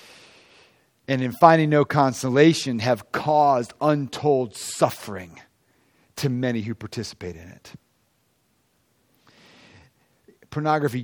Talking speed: 85 wpm